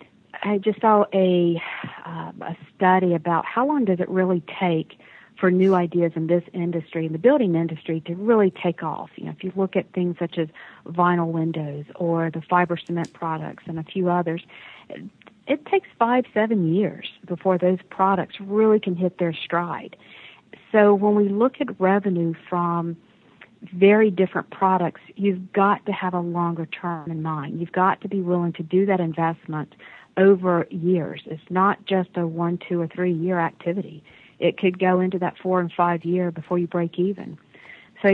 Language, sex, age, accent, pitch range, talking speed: English, female, 50-69, American, 170-195 Hz, 175 wpm